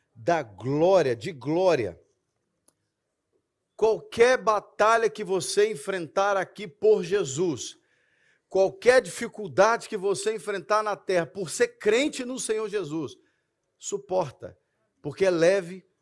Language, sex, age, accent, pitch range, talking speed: Portuguese, male, 50-69, Brazilian, 155-215 Hz, 110 wpm